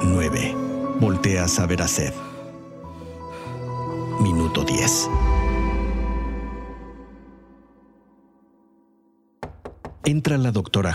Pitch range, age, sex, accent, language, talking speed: 90-125 Hz, 50-69, male, Mexican, Spanish, 60 wpm